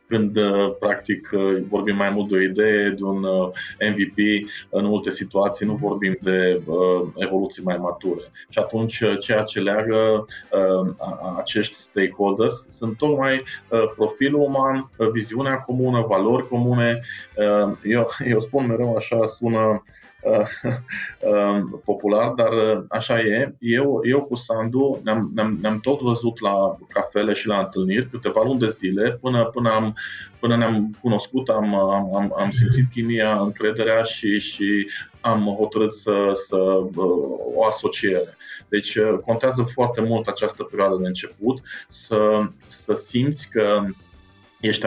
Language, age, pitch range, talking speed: Romanian, 30-49, 100-120 Hz, 120 wpm